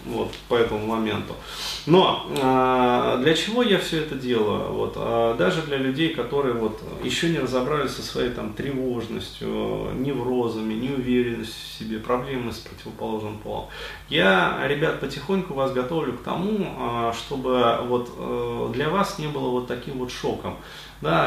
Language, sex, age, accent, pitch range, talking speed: Russian, male, 20-39, native, 110-140 Hz, 155 wpm